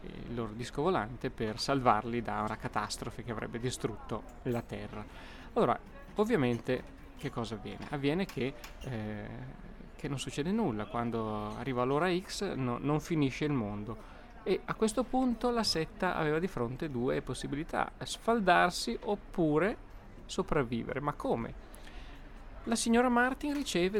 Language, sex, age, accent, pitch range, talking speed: Italian, male, 30-49, native, 120-180 Hz, 140 wpm